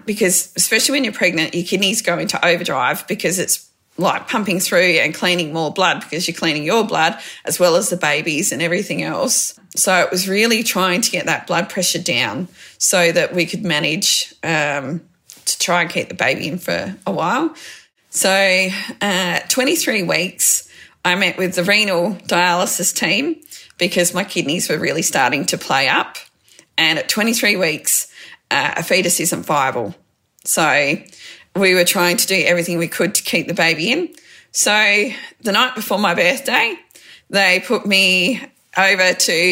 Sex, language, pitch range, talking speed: female, English, 175-225 Hz, 170 wpm